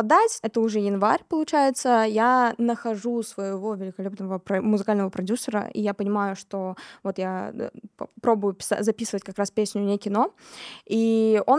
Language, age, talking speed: Russian, 20-39, 130 wpm